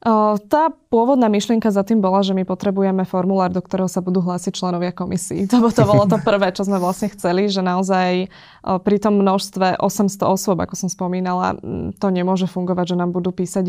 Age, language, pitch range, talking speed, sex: 20-39, Slovak, 180-200 Hz, 195 wpm, female